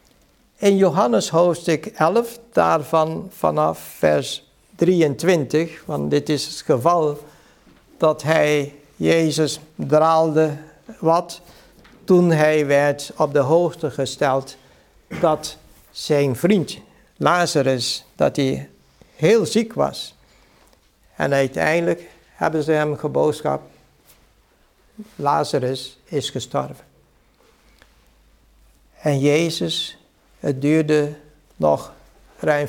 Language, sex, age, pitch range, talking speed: Dutch, male, 60-79, 140-175 Hz, 90 wpm